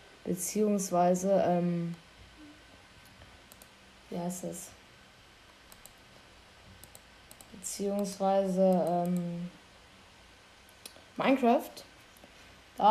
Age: 20-39